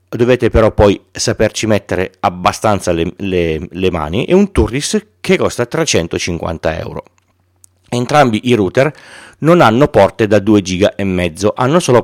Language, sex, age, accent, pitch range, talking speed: Italian, male, 40-59, native, 95-120 Hz, 140 wpm